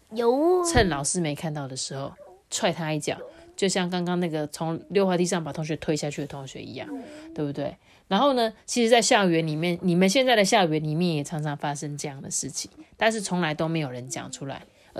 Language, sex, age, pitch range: Chinese, female, 30-49, 155-200 Hz